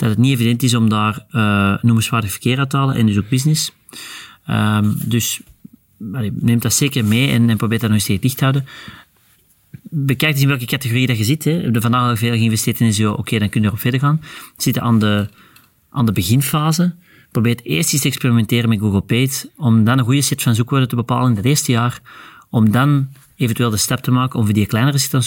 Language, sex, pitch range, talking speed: Dutch, male, 110-130 Hz, 235 wpm